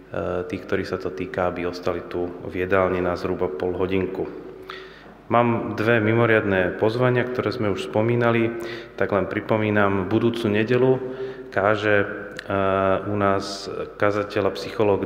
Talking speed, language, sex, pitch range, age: 130 wpm, Slovak, male, 95-105 Hz, 30-49